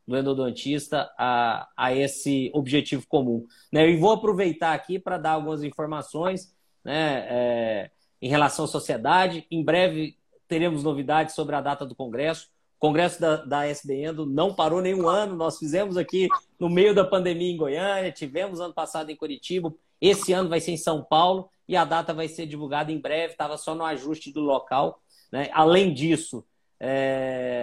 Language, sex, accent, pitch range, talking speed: Portuguese, male, Brazilian, 145-175 Hz, 175 wpm